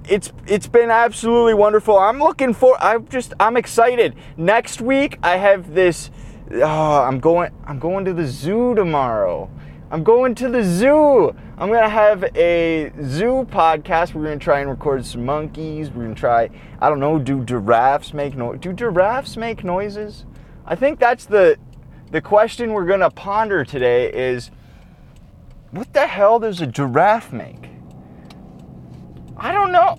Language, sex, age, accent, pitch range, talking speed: English, male, 20-39, American, 145-230 Hz, 165 wpm